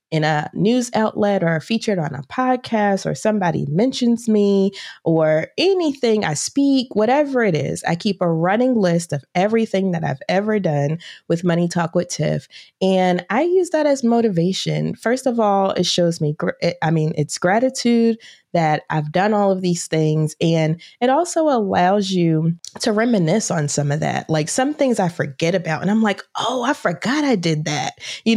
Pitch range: 165-225 Hz